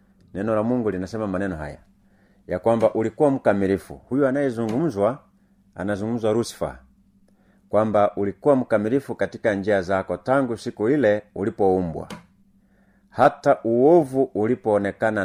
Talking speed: 100 wpm